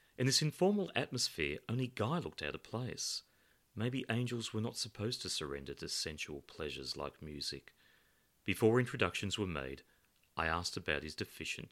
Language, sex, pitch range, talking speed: English, male, 75-125 Hz, 160 wpm